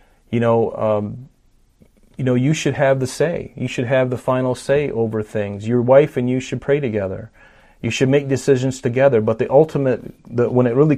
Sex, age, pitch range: male, 40-59, 110-130 Hz